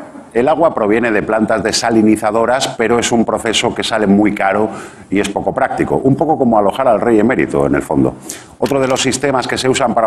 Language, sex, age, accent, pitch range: Japanese, male, 50-69, Spanish, 95-130 Hz